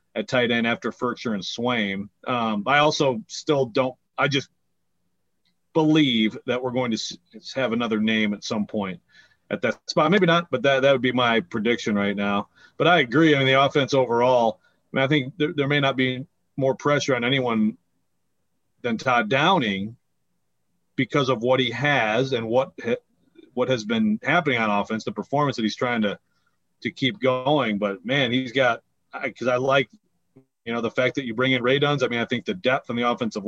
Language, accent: English, American